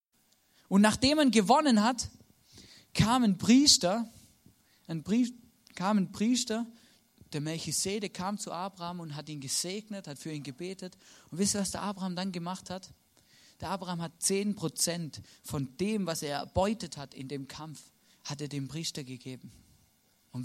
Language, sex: German, male